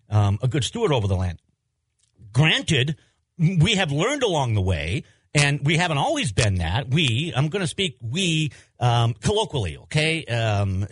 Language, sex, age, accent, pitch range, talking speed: English, male, 50-69, American, 115-160 Hz, 165 wpm